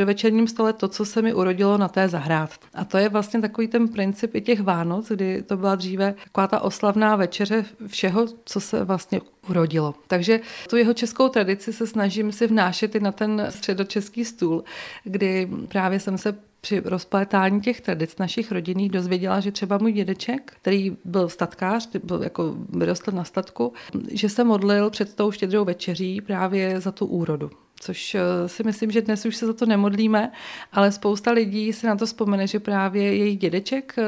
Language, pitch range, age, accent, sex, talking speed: Czech, 190-215 Hz, 40-59, native, female, 185 wpm